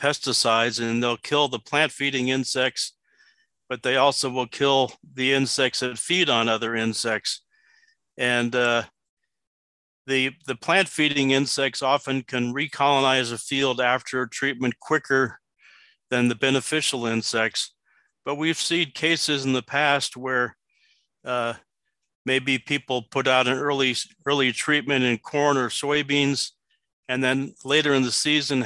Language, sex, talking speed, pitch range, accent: English, male, 135 wpm, 120-140 Hz, American